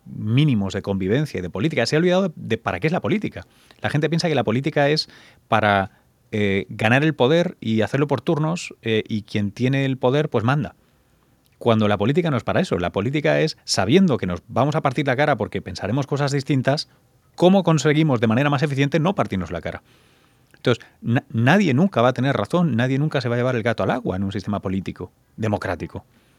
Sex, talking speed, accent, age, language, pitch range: male, 210 wpm, Spanish, 30-49, Spanish, 105-150 Hz